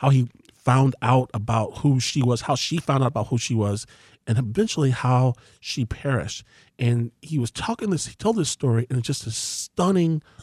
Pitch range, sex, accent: 115-145 Hz, male, American